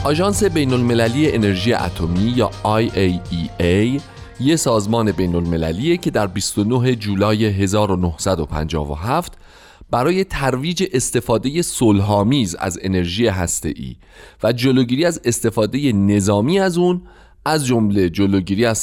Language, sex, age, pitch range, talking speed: Persian, male, 30-49, 90-130 Hz, 100 wpm